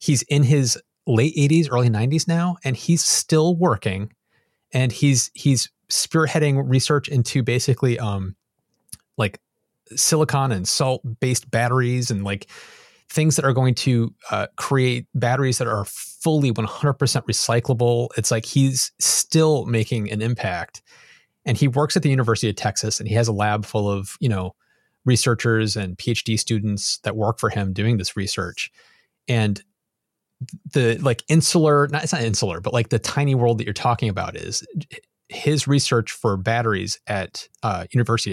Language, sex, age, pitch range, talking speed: English, male, 30-49, 110-135 Hz, 160 wpm